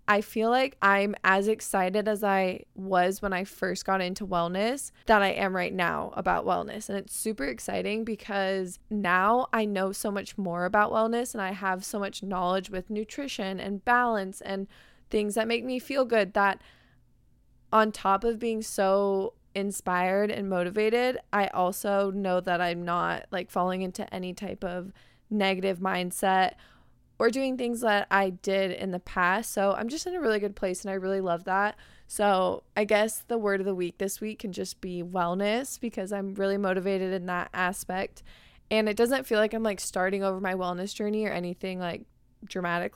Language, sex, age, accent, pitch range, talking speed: English, female, 20-39, American, 185-215 Hz, 185 wpm